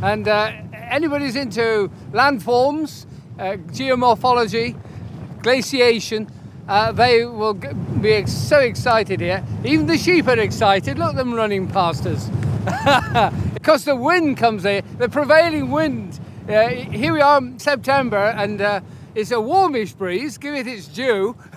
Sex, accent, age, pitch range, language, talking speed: male, British, 50-69, 205-290 Hz, English, 135 wpm